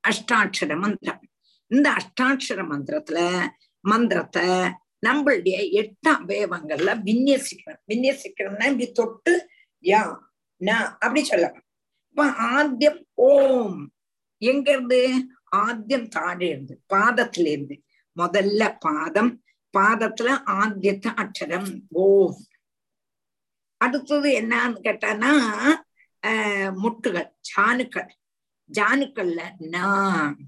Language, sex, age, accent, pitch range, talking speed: Tamil, female, 50-69, native, 190-270 Hz, 75 wpm